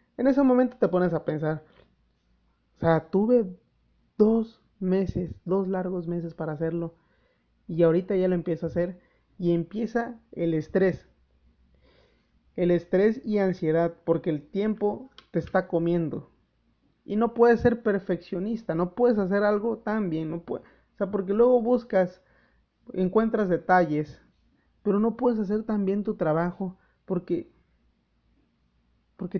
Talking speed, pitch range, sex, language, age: 135 wpm, 155-205 Hz, male, Spanish, 30-49